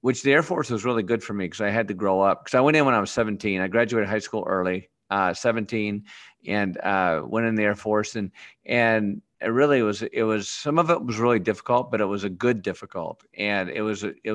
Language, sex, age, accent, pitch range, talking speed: English, male, 50-69, American, 100-120 Hz, 250 wpm